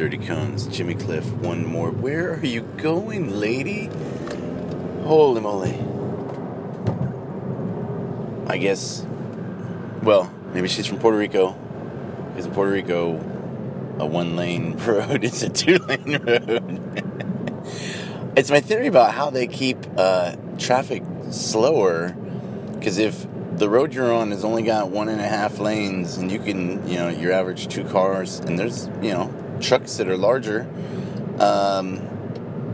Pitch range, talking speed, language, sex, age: 95-120 Hz, 135 wpm, English, male, 30-49